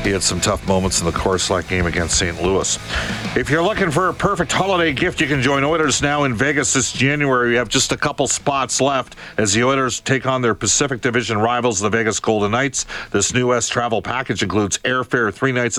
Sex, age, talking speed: male, 50-69, 220 wpm